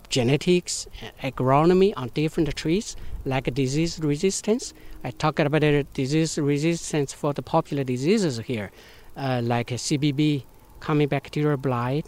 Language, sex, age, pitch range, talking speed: English, male, 60-79, 135-165 Hz, 130 wpm